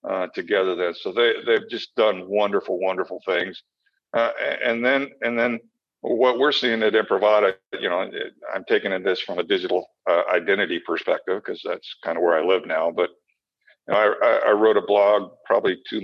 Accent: American